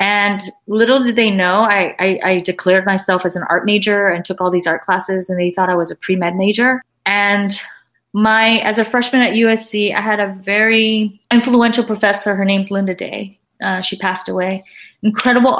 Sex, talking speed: female, 190 wpm